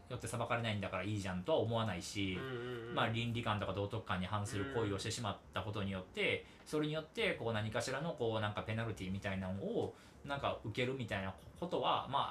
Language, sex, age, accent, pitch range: Japanese, male, 40-59, native, 100-130 Hz